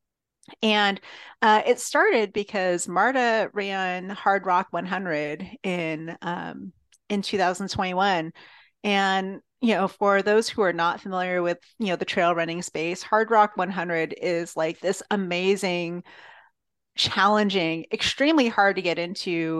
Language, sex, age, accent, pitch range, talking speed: English, female, 30-49, American, 170-200 Hz, 130 wpm